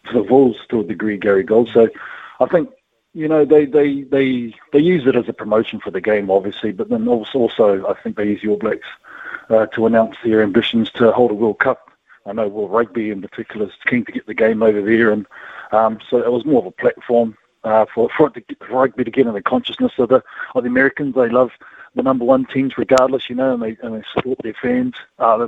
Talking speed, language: 245 wpm, English